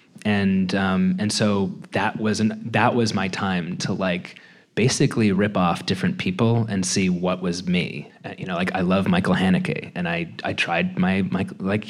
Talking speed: 190 wpm